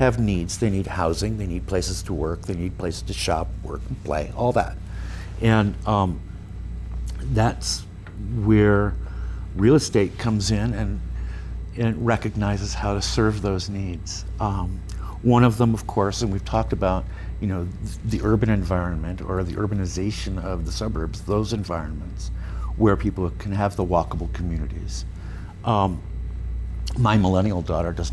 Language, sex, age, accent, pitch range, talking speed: English, male, 60-79, American, 90-105 Hz, 155 wpm